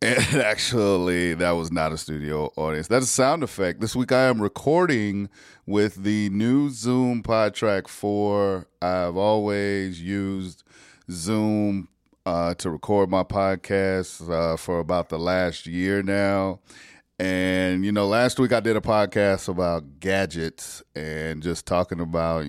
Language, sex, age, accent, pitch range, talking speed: English, male, 30-49, American, 85-100 Hz, 145 wpm